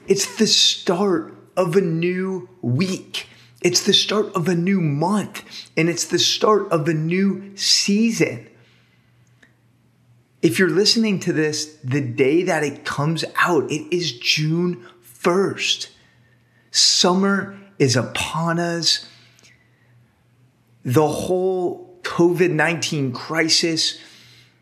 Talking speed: 110 wpm